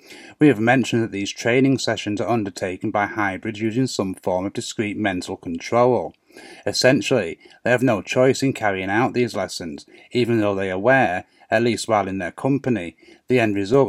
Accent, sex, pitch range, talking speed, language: British, male, 100-125 Hz, 180 wpm, English